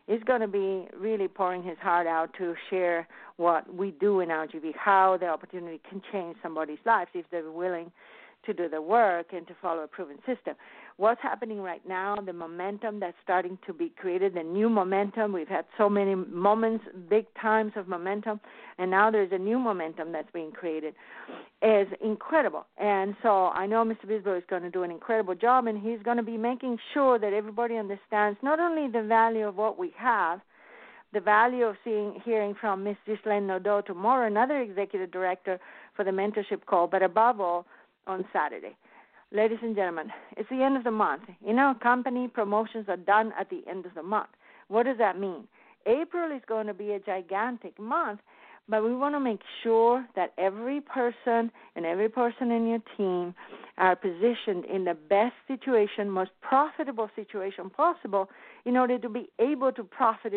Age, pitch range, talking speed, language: 50-69, 185-230 Hz, 185 wpm, English